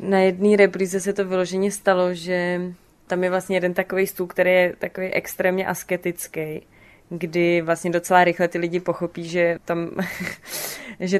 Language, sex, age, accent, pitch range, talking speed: Czech, female, 20-39, native, 175-185 Hz, 155 wpm